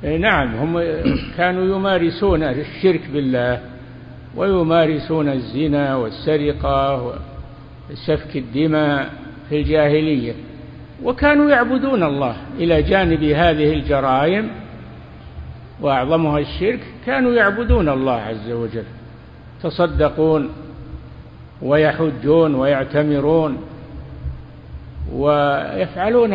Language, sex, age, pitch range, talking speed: Arabic, male, 60-79, 115-175 Hz, 70 wpm